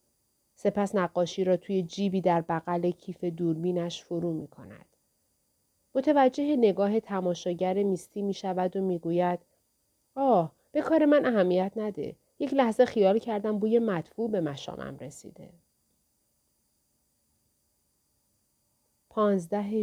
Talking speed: 105 wpm